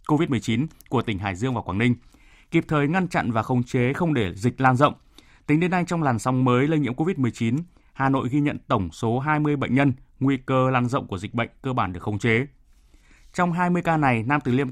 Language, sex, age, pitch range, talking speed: Vietnamese, male, 20-39, 115-150 Hz, 235 wpm